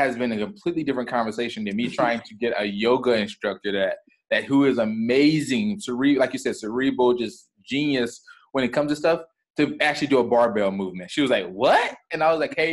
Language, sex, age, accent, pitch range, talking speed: English, male, 20-39, American, 115-145 Hz, 210 wpm